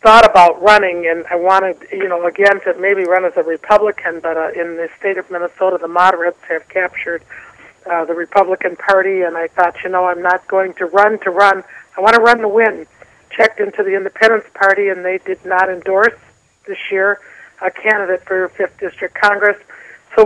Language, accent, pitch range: English, American, 175-210 Hz